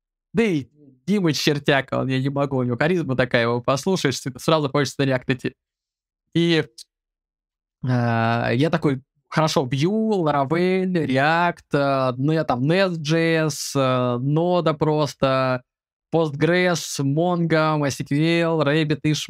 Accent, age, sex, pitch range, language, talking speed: native, 20-39, male, 135-170 Hz, Russian, 110 wpm